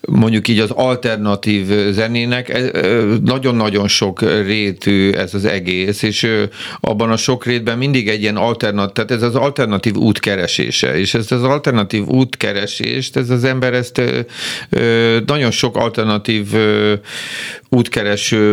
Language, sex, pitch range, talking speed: Hungarian, male, 95-115 Hz, 125 wpm